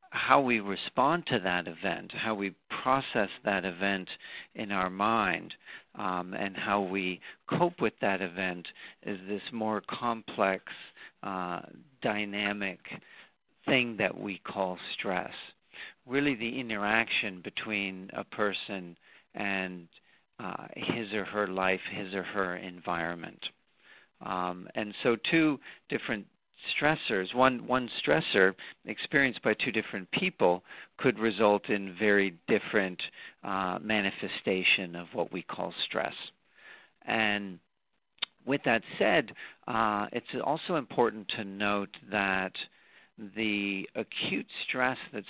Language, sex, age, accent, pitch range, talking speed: English, male, 50-69, American, 95-110 Hz, 120 wpm